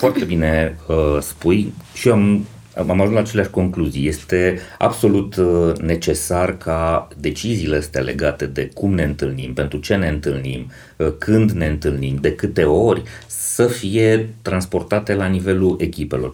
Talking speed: 135 wpm